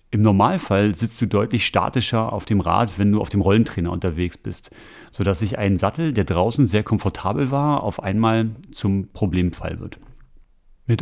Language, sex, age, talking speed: German, male, 40-59, 175 wpm